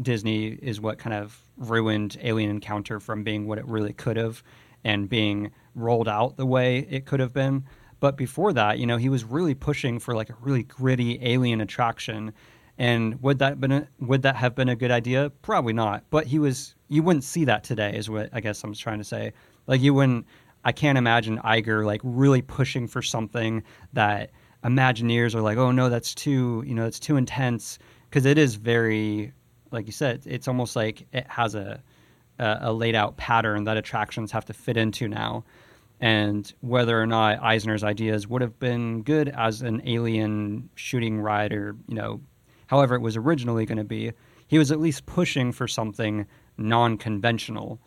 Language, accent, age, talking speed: English, American, 30-49, 190 wpm